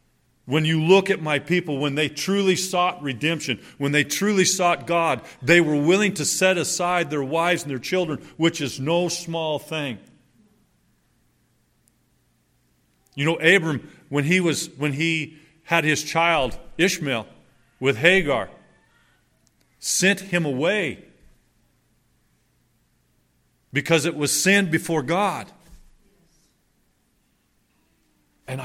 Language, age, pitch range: English, 40-59, 140-175 Hz